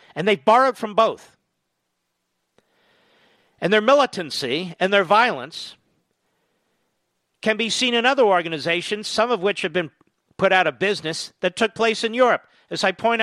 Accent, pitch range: American, 200-265 Hz